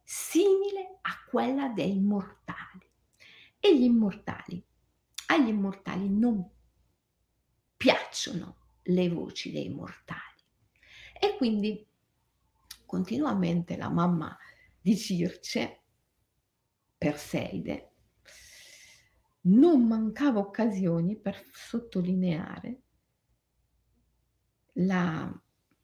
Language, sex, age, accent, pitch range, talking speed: Italian, female, 50-69, native, 180-230 Hz, 70 wpm